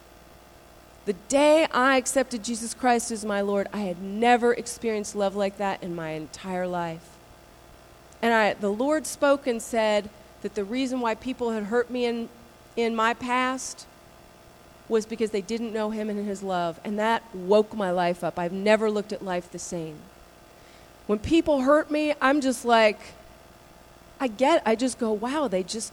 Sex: female